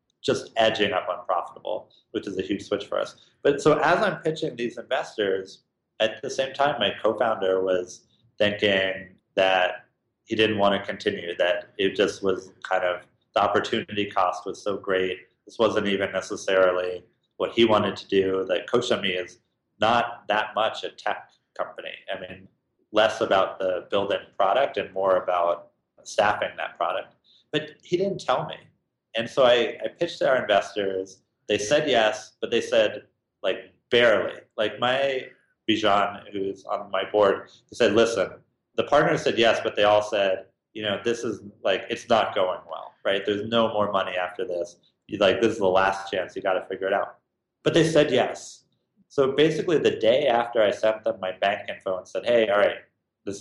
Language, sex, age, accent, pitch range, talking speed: English, male, 30-49, American, 95-115 Hz, 180 wpm